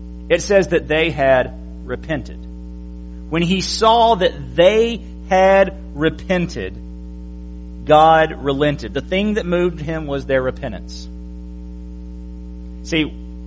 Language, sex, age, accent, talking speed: English, male, 40-59, American, 105 wpm